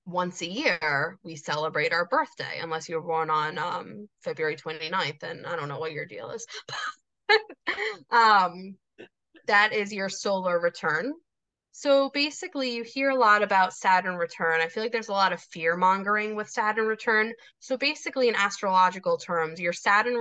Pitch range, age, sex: 165-215 Hz, 10-29, female